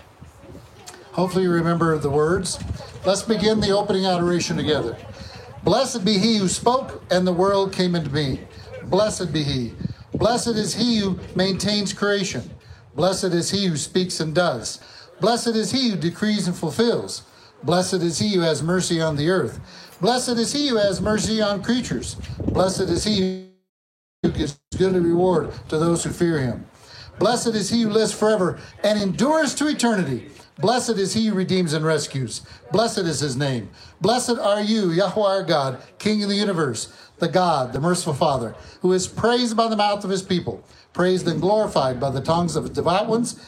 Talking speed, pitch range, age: 180 wpm, 150-210 Hz, 60-79